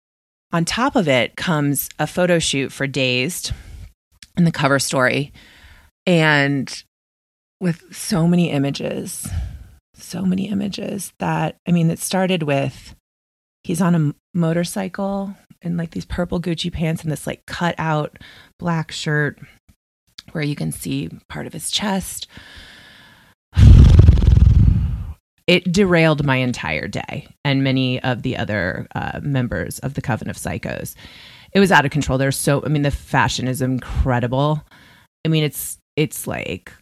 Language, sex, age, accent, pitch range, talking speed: English, female, 30-49, American, 125-170 Hz, 145 wpm